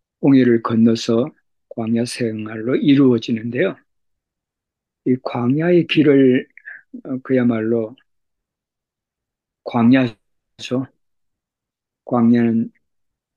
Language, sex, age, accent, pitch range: Korean, male, 50-69, native, 115-130 Hz